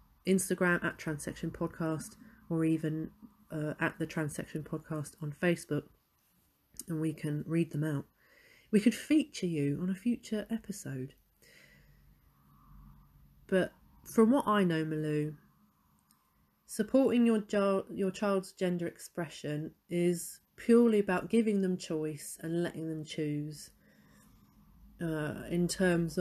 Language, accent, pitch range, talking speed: English, British, 160-195 Hz, 120 wpm